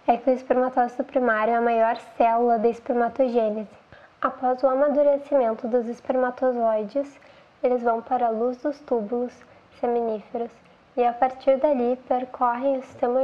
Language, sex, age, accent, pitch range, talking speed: Portuguese, female, 10-29, Brazilian, 235-270 Hz, 140 wpm